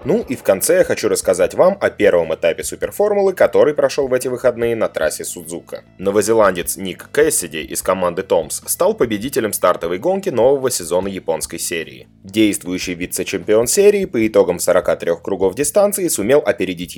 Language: Russian